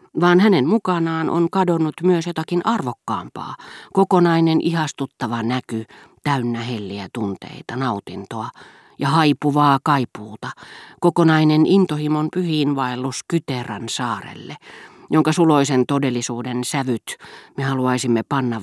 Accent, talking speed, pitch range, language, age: native, 95 wpm, 125-175 Hz, Finnish, 40-59